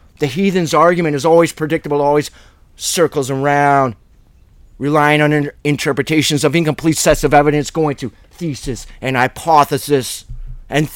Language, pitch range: English, 110-155 Hz